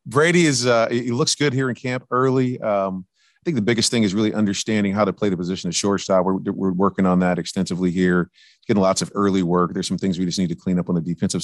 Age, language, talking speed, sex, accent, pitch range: 30-49, English, 270 wpm, male, American, 90-100 Hz